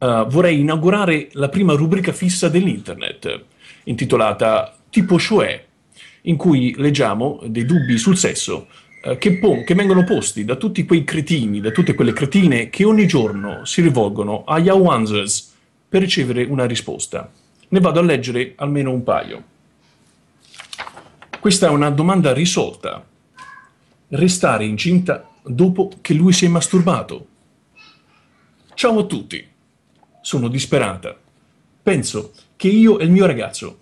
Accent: native